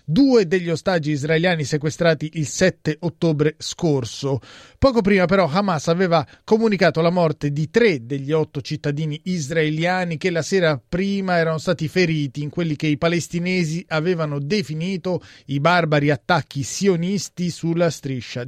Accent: native